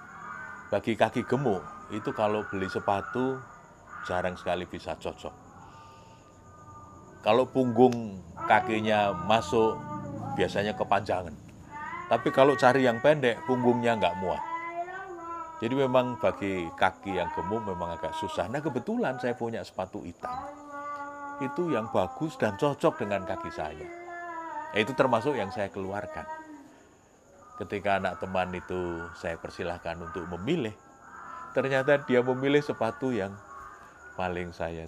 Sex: male